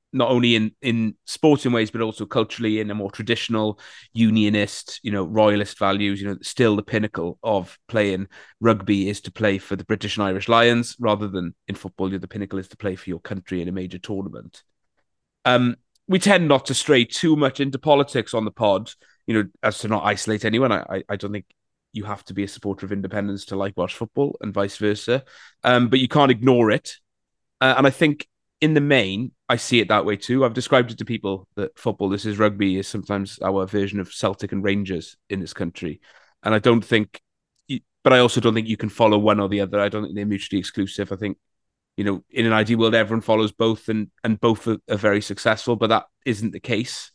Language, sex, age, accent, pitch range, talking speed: English, male, 30-49, British, 100-120 Hz, 225 wpm